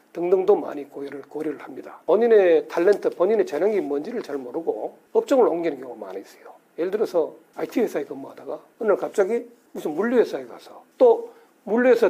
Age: 40-59